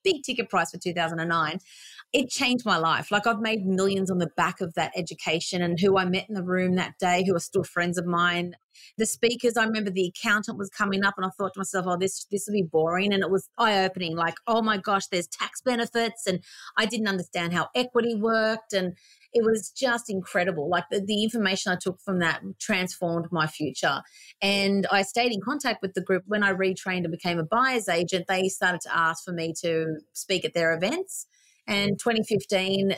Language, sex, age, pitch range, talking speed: English, female, 30-49, 175-215 Hz, 215 wpm